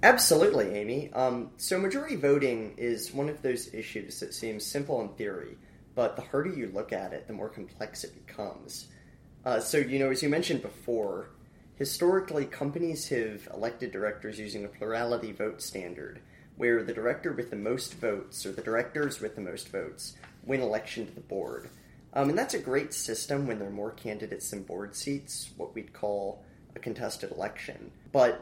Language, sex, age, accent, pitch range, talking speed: English, male, 30-49, American, 105-140 Hz, 180 wpm